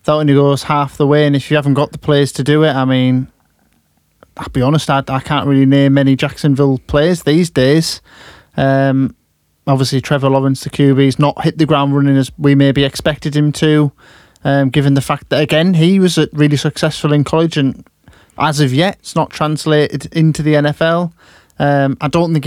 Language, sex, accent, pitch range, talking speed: English, male, British, 135-155 Hz, 200 wpm